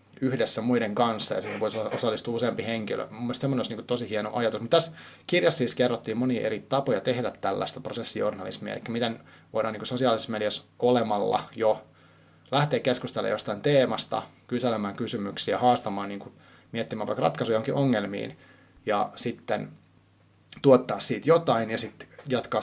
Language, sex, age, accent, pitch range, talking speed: Finnish, male, 30-49, native, 105-130 Hz, 145 wpm